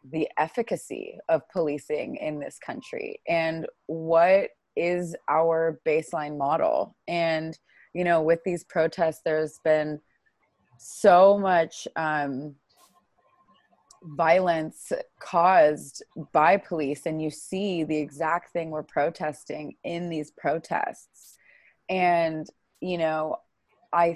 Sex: female